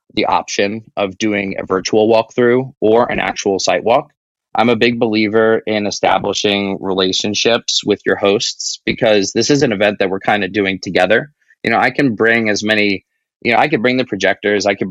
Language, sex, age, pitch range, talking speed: English, male, 20-39, 100-115 Hz, 195 wpm